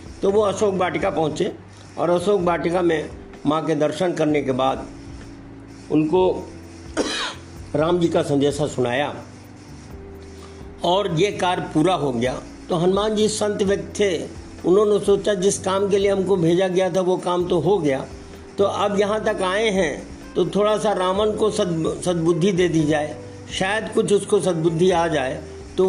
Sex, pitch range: male, 140-195 Hz